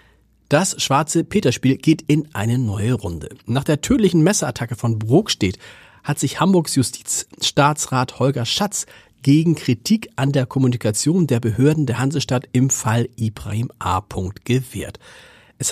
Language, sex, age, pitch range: German, male, 40-59, 115-150 Hz